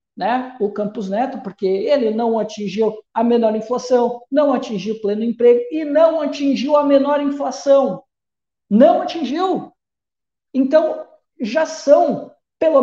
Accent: Brazilian